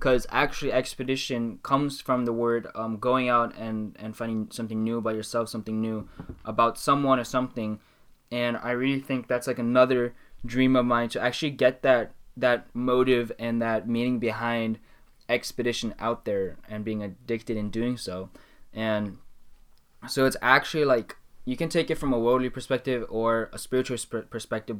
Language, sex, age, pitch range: English, male, 10-29, 110-130 Hz